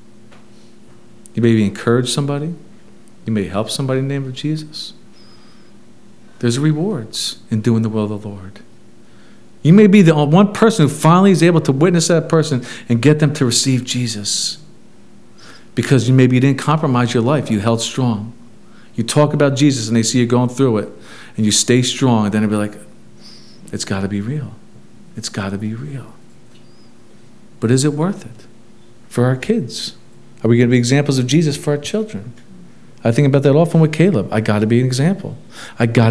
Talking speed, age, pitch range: 195 wpm, 40-59, 115-155 Hz